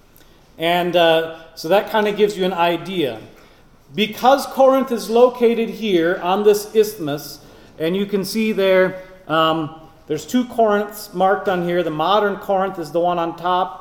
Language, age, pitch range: English, 40-59, 175-225 Hz